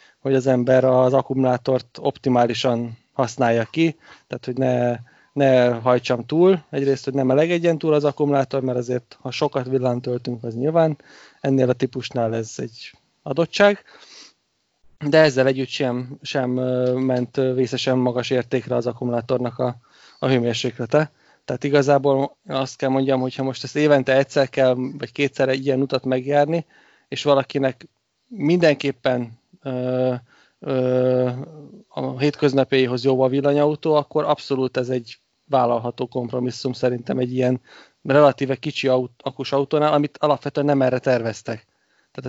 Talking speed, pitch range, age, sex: 135 wpm, 125-145 Hz, 20-39, male